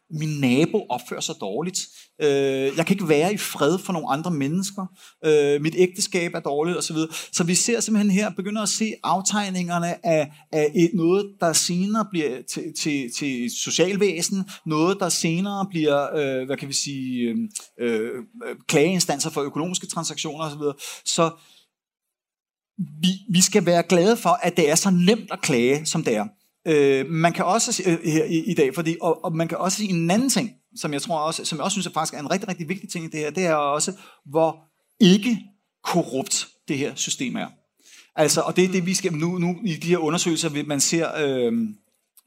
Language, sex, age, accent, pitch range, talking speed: Danish, male, 30-49, native, 140-185 Hz, 190 wpm